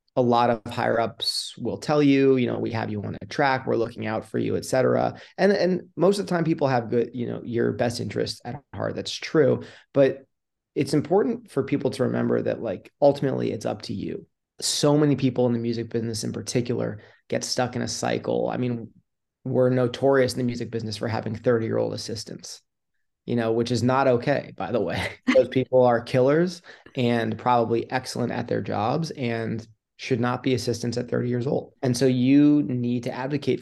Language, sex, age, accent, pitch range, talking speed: English, male, 30-49, American, 115-130 Hz, 210 wpm